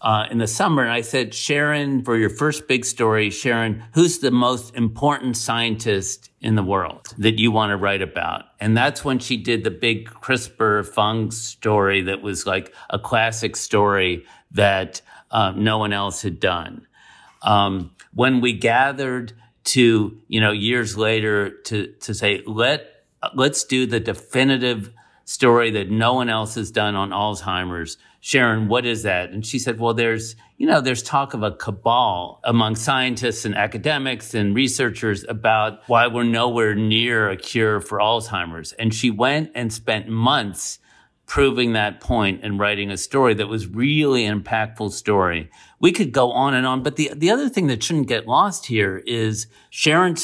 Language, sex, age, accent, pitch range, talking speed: English, male, 50-69, American, 105-125 Hz, 170 wpm